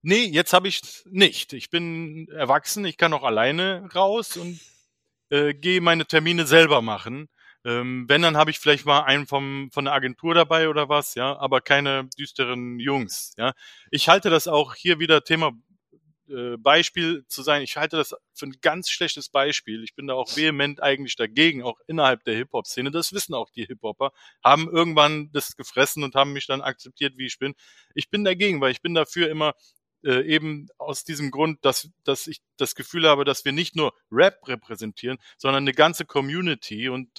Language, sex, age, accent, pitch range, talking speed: German, male, 30-49, German, 130-160 Hz, 190 wpm